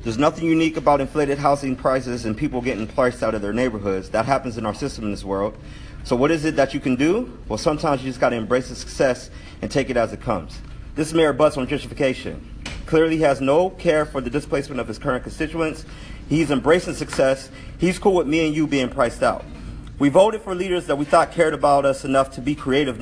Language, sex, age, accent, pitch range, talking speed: English, male, 40-59, American, 125-165 Hz, 235 wpm